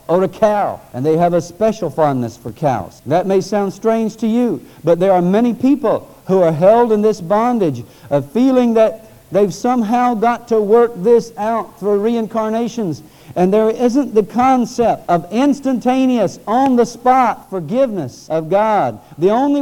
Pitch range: 165-235 Hz